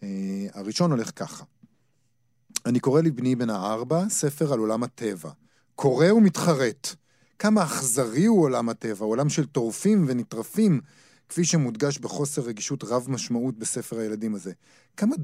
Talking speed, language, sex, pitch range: 135 wpm, Hebrew, male, 110-150 Hz